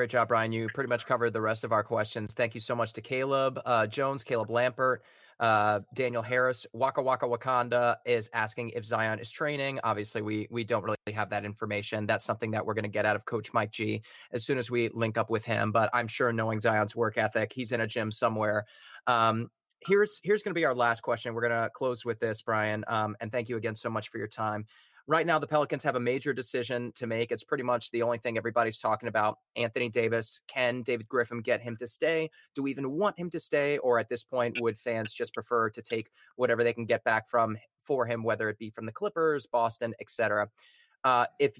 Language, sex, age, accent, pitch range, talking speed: English, male, 30-49, American, 110-135 Hz, 235 wpm